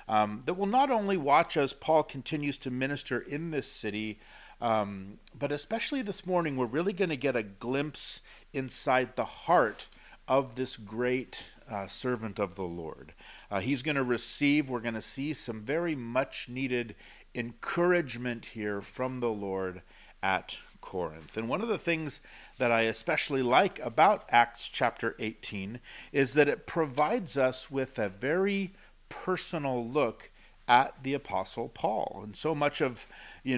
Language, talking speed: English, 160 wpm